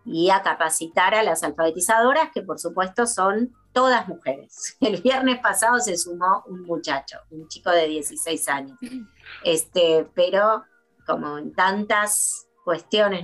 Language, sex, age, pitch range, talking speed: Spanish, female, 30-49, 165-220 Hz, 135 wpm